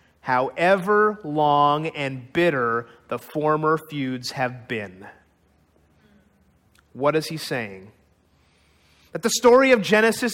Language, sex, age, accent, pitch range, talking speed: English, male, 30-49, American, 155-245 Hz, 105 wpm